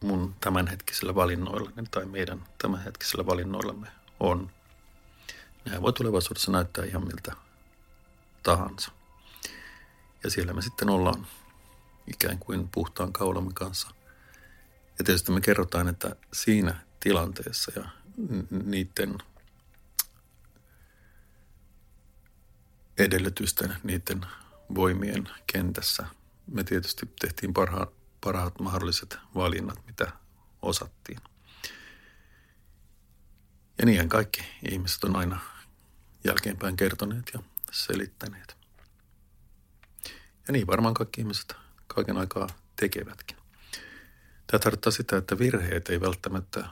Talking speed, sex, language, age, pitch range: 90 wpm, male, Finnish, 50-69, 90-100 Hz